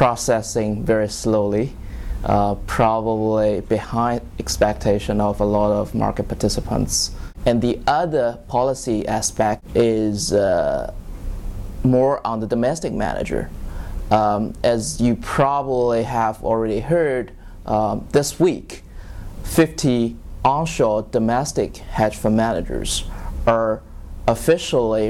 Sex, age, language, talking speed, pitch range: male, 20-39, English, 105 wpm, 100-115 Hz